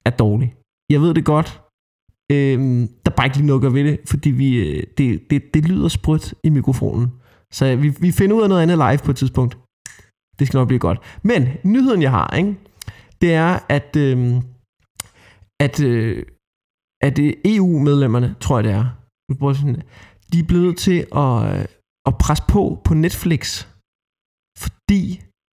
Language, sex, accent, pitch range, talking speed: Danish, male, native, 125-165 Hz, 165 wpm